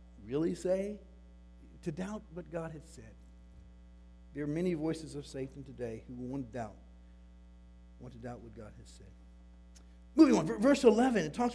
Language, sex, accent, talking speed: English, male, American, 170 wpm